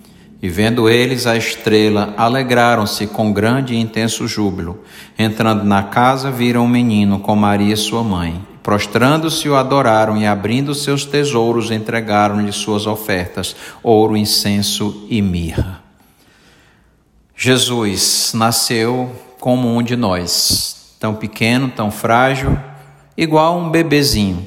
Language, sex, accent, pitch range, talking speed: Portuguese, male, Brazilian, 100-125 Hz, 120 wpm